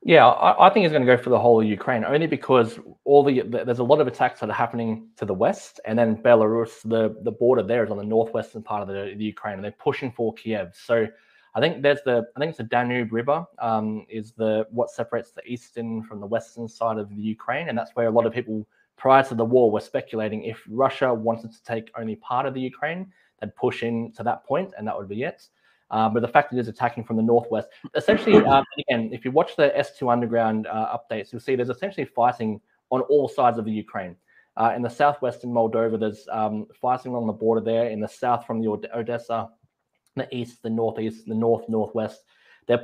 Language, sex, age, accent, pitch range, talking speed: English, male, 20-39, Australian, 110-130 Hz, 235 wpm